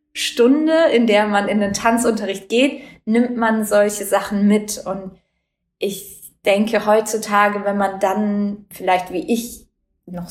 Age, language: 20-39, English